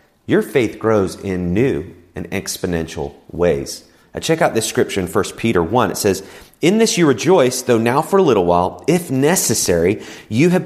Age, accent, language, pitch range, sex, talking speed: 30-49, American, English, 100-145 Hz, male, 185 wpm